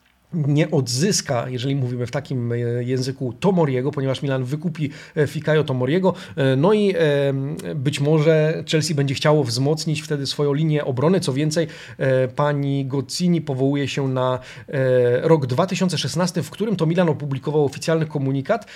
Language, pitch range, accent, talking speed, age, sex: Polish, 130-160 Hz, native, 130 wpm, 40-59, male